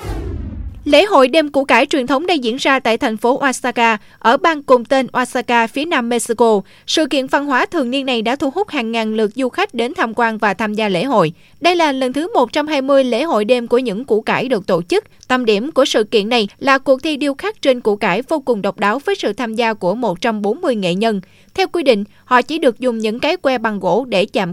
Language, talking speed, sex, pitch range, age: Vietnamese, 245 wpm, female, 220-280 Hz, 20-39